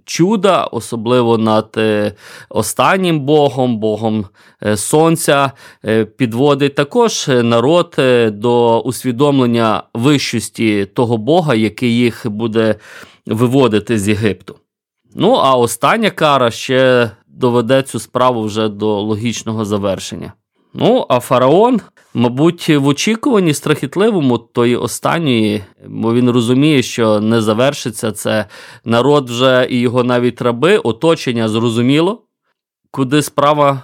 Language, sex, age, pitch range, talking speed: Ukrainian, male, 20-39, 115-145 Hz, 105 wpm